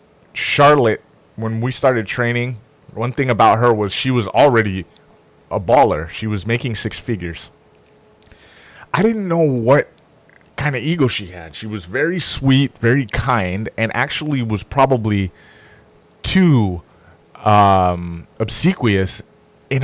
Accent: American